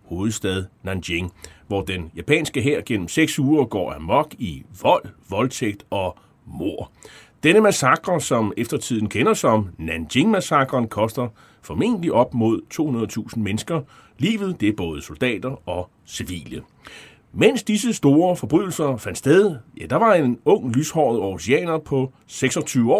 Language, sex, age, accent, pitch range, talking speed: Danish, male, 30-49, native, 110-150 Hz, 135 wpm